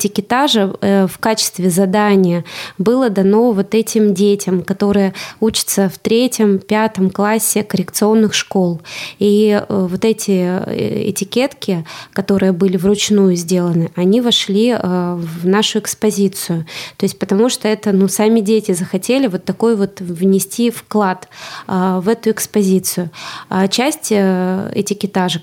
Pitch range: 190-215 Hz